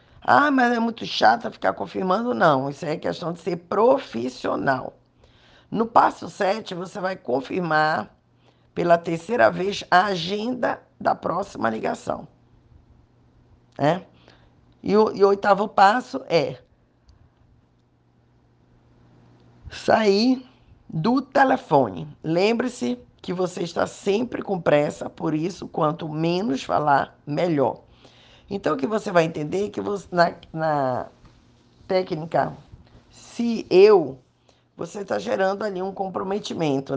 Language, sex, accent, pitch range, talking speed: Portuguese, female, Brazilian, 150-200 Hz, 115 wpm